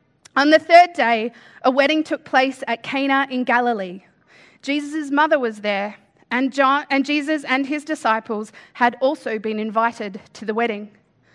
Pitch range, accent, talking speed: 215-280 Hz, Australian, 160 wpm